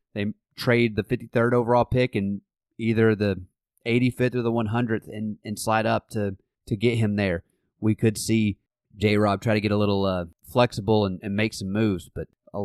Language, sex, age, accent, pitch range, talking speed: English, male, 30-49, American, 100-115 Hz, 190 wpm